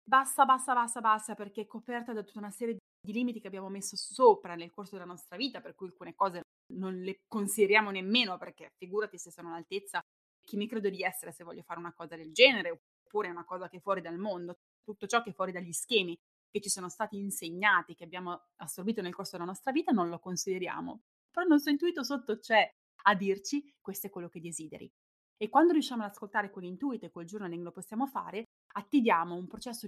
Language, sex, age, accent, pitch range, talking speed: Italian, female, 20-39, native, 180-220 Hz, 215 wpm